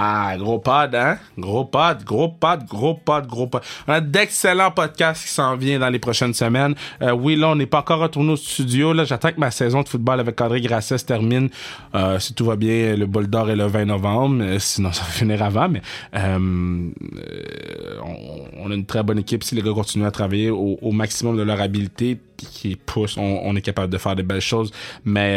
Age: 20-39